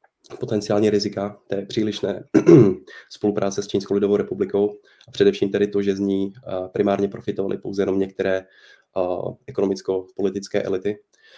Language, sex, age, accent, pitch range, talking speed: Czech, male, 20-39, native, 100-110 Hz, 120 wpm